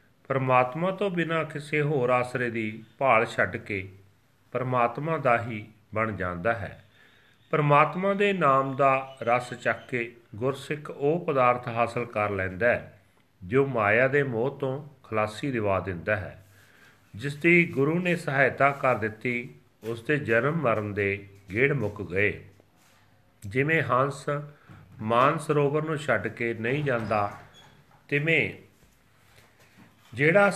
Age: 40-59